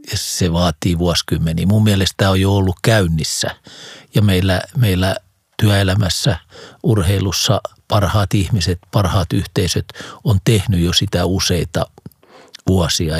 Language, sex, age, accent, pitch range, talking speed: Finnish, male, 50-69, native, 90-110 Hz, 120 wpm